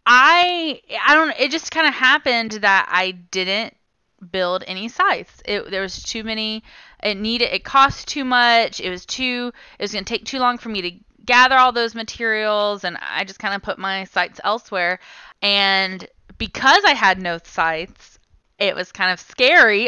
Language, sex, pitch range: English, female, 195-260 Hz